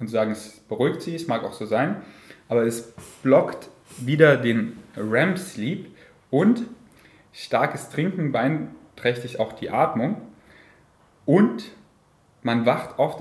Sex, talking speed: male, 125 wpm